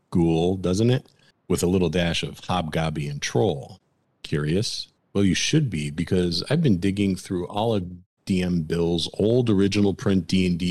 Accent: American